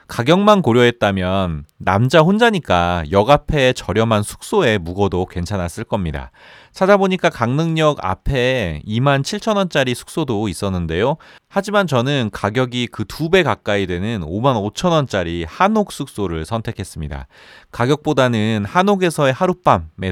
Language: Korean